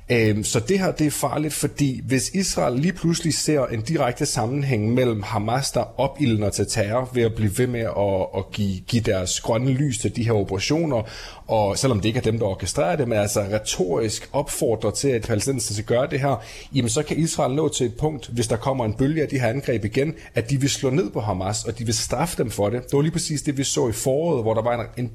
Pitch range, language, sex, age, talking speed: 110-140 Hz, Danish, male, 30-49, 235 wpm